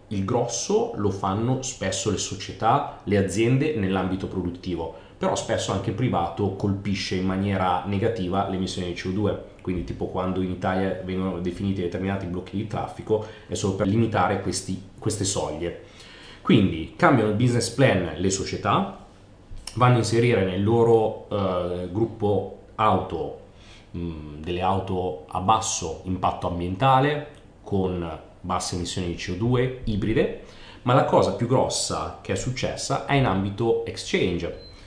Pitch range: 95-115 Hz